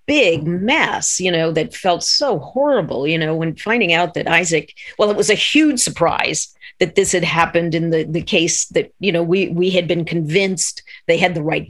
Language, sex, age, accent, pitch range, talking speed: English, female, 50-69, American, 165-200 Hz, 210 wpm